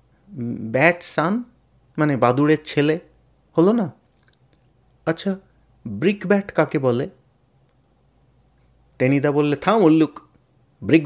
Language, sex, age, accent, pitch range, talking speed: Bengali, male, 50-69, native, 120-170 Hz, 80 wpm